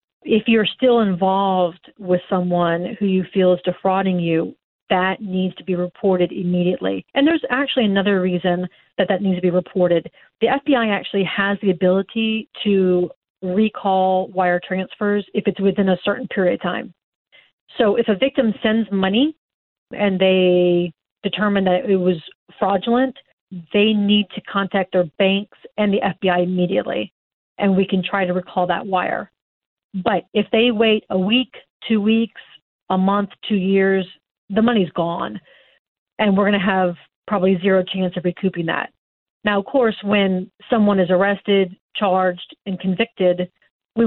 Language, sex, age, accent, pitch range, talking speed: English, female, 40-59, American, 180-205 Hz, 155 wpm